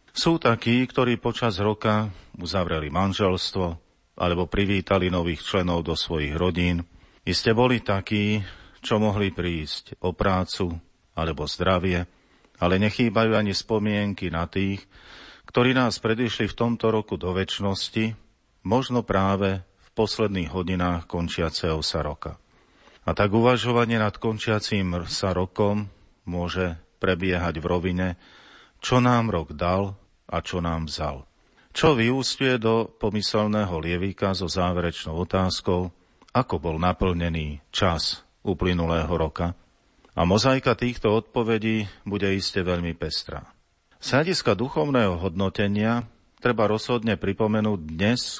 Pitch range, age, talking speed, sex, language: 90-110 Hz, 40-59, 115 wpm, male, Slovak